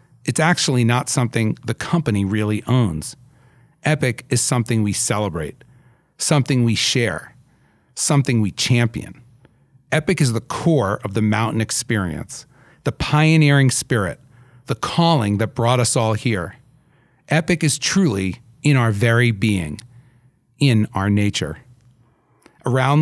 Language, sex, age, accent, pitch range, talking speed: English, male, 40-59, American, 110-140 Hz, 125 wpm